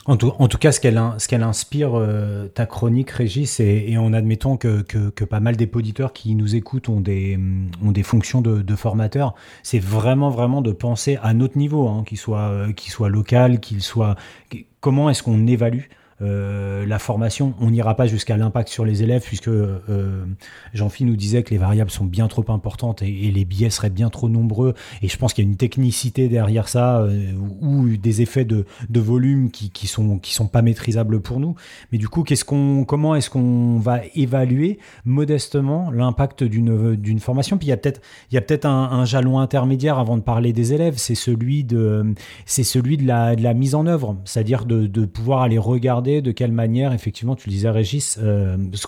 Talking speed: 205 wpm